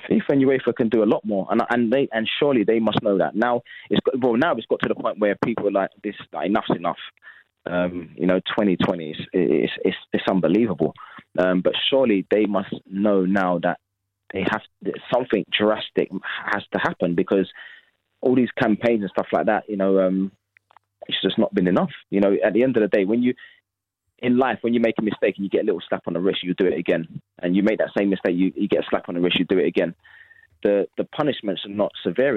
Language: English